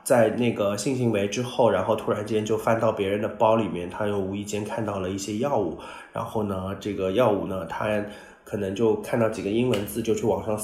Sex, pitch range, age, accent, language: male, 100-115 Hz, 20-39, native, Chinese